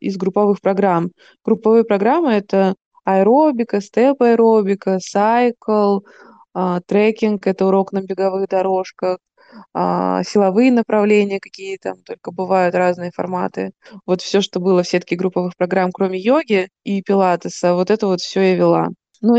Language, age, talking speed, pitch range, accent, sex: Russian, 20-39, 125 wpm, 185-220 Hz, native, female